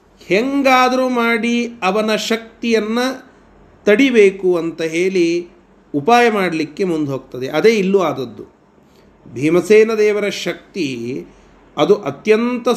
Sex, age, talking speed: male, 40-59, 80 wpm